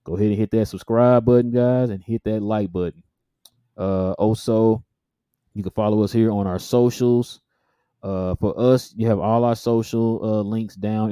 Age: 20-39